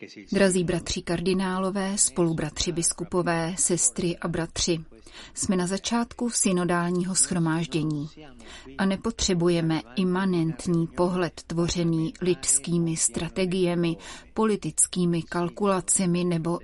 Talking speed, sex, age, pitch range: 85 wpm, female, 30-49, 165-190 Hz